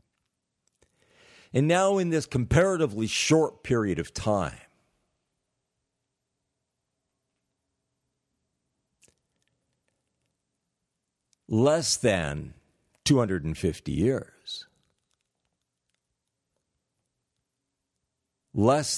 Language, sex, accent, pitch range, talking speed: English, male, American, 100-145 Hz, 45 wpm